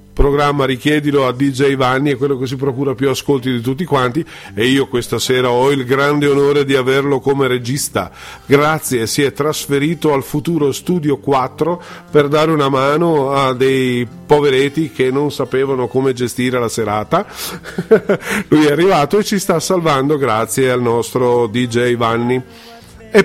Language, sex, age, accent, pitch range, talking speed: Italian, male, 50-69, native, 125-160 Hz, 160 wpm